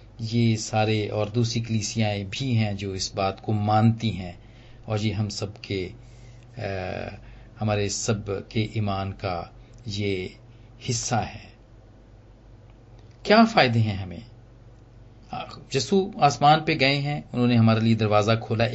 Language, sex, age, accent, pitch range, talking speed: Hindi, male, 40-59, native, 110-140 Hz, 120 wpm